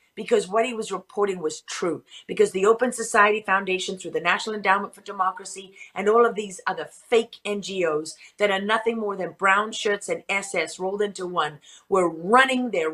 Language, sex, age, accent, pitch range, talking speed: English, female, 40-59, American, 175-220 Hz, 185 wpm